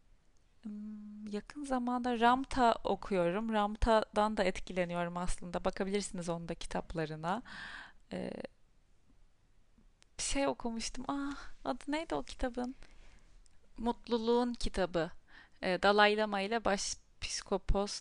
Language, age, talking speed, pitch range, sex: Turkish, 30-49, 95 wpm, 185-240 Hz, female